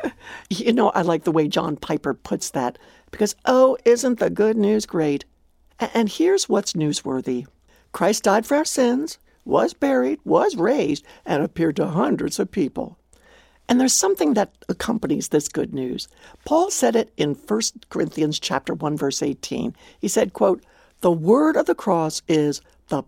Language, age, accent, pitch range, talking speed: English, 60-79, American, 150-255 Hz, 165 wpm